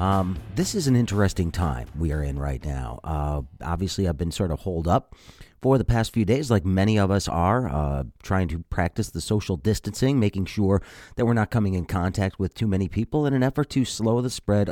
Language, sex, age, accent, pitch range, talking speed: English, male, 40-59, American, 85-120 Hz, 225 wpm